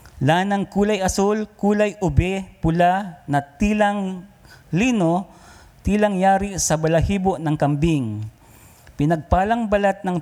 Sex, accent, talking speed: male, native, 105 wpm